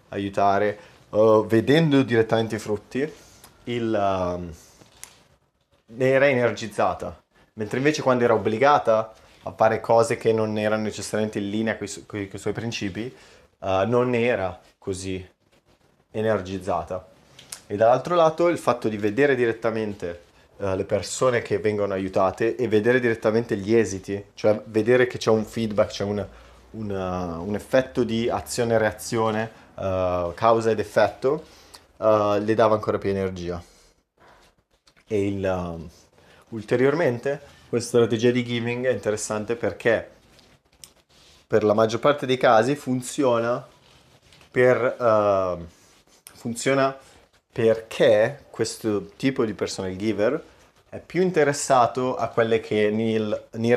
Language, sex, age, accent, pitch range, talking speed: Italian, male, 30-49, native, 100-120 Hz, 120 wpm